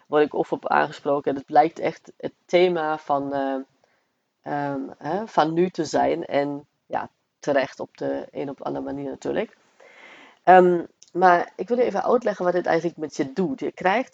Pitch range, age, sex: 150-185 Hz, 40-59, female